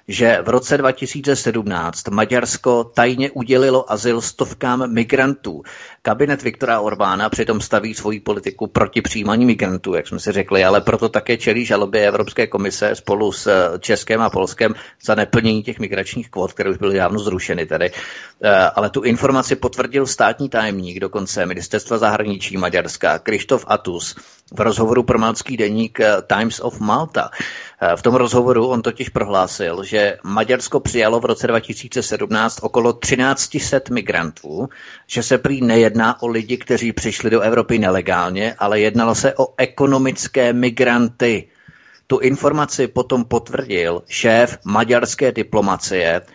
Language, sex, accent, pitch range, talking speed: Czech, male, native, 110-130 Hz, 135 wpm